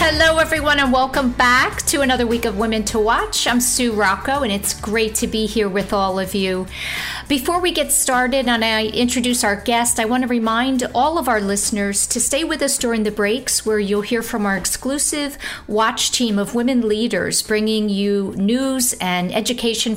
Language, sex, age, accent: English, female, 50-69, American